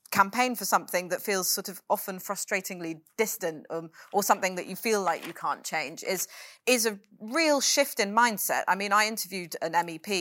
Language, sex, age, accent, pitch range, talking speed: English, female, 30-49, British, 165-205 Hz, 195 wpm